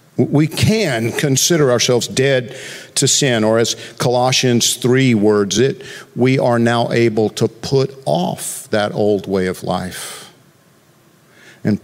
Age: 50-69